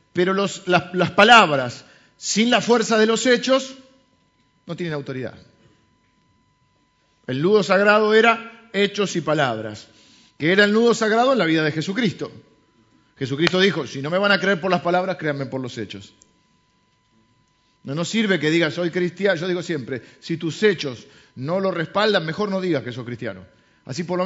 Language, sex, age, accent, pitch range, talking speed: Spanish, male, 40-59, Argentinian, 145-200 Hz, 175 wpm